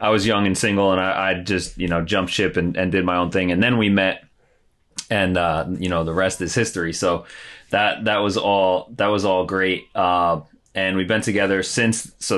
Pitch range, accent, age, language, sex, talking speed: 90-110 Hz, American, 30-49, English, male, 230 wpm